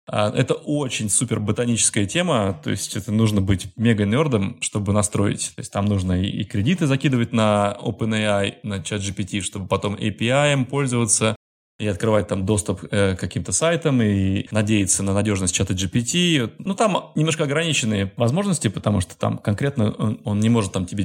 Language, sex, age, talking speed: Russian, male, 20-39, 170 wpm